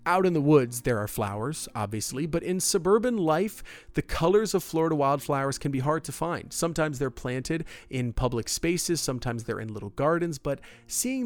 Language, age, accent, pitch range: English, 40-59, American, 115-155 Hz